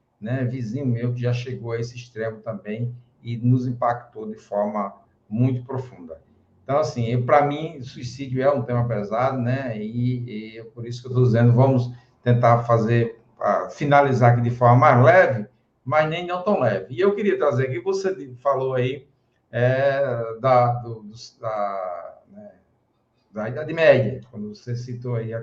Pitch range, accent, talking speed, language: 120-135 Hz, Brazilian, 170 wpm, Portuguese